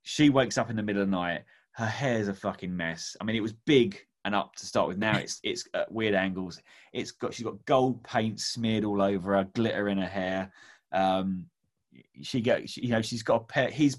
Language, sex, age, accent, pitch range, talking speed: English, male, 20-39, British, 100-135 Hz, 195 wpm